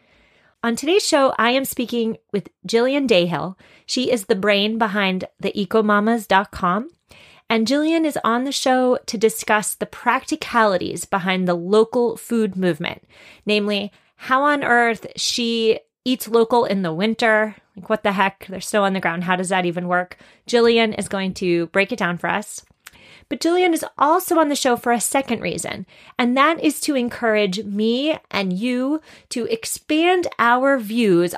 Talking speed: 165 wpm